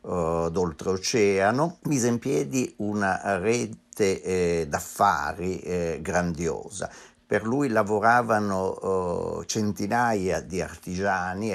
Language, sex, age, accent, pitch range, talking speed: Italian, male, 50-69, native, 95-130 Hz, 90 wpm